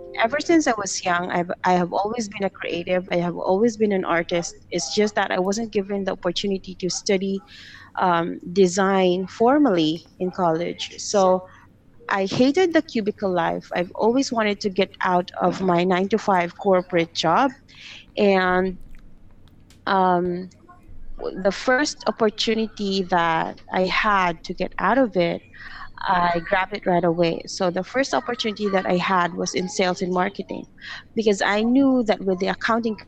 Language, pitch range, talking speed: English, 175-210 Hz, 160 wpm